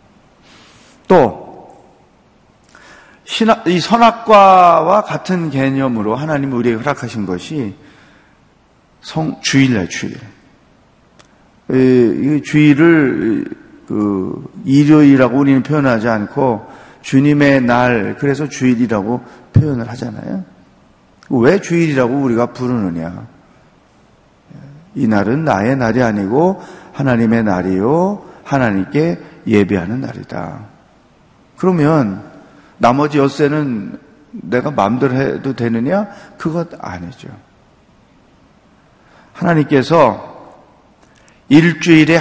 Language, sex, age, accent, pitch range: Korean, male, 40-59, native, 115-165 Hz